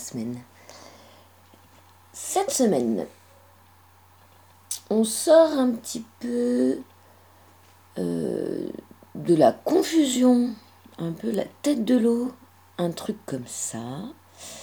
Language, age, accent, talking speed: French, 40-59, French, 90 wpm